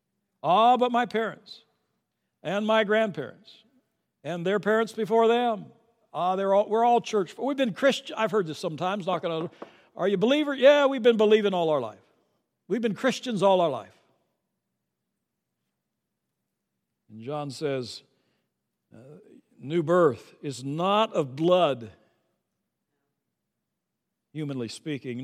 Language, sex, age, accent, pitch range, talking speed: English, male, 60-79, American, 135-200 Hz, 135 wpm